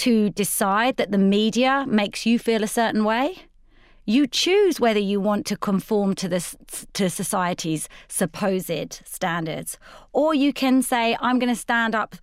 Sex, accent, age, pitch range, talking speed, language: female, British, 30-49, 195-255 Hz, 160 wpm, English